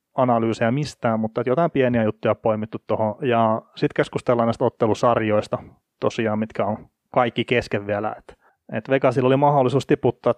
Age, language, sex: 30-49, Finnish, male